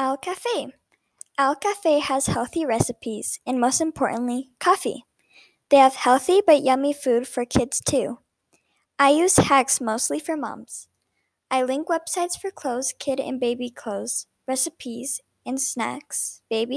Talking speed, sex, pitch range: 140 wpm, male, 240-290 Hz